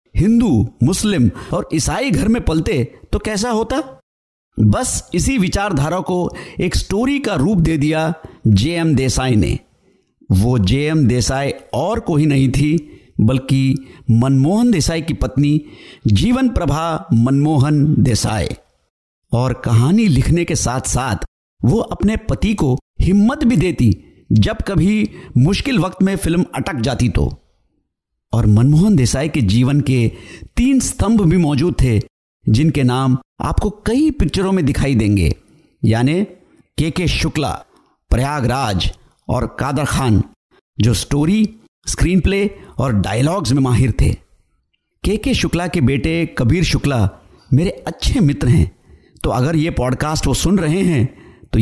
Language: Hindi